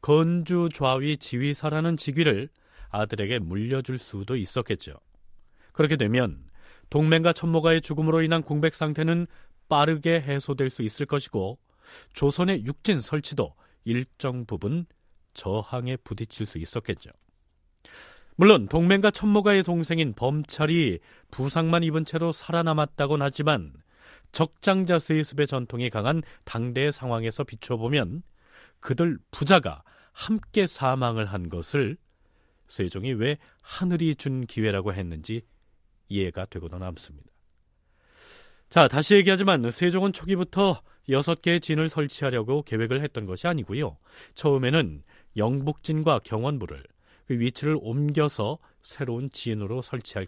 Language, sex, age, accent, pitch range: Korean, male, 40-59, native, 105-160 Hz